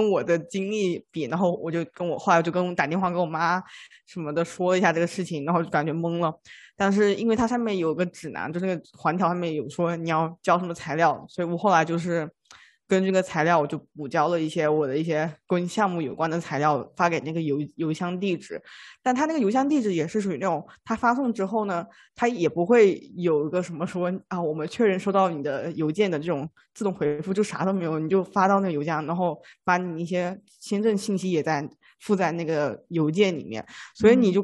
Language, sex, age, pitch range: Chinese, female, 20-39, 160-190 Hz